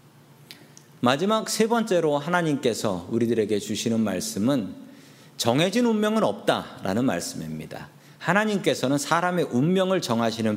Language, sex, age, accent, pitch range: Korean, male, 40-59, native, 110-160 Hz